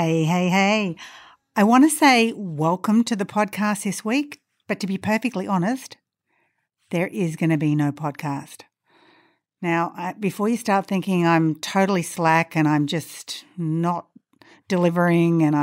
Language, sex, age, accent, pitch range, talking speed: English, female, 50-69, Australian, 160-210 Hz, 150 wpm